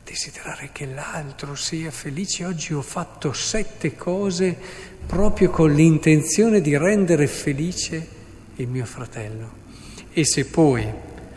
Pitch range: 120-150 Hz